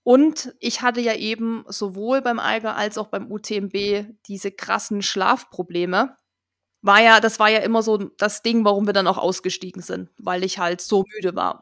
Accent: German